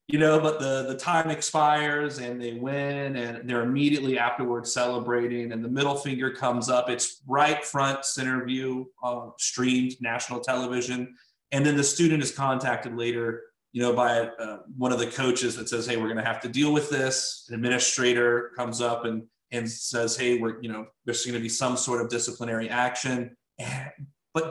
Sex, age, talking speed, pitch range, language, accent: male, 30-49, 180 wpm, 120-140 Hz, English, American